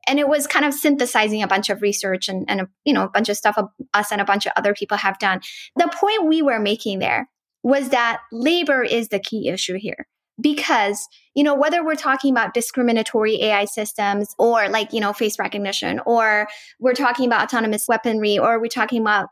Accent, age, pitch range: American, 10-29, 210-275 Hz